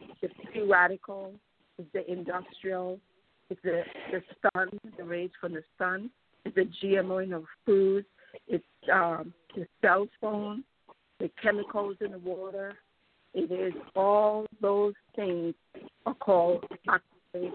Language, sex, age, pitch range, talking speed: English, female, 50-69, 185-215 Hz, 130 wpm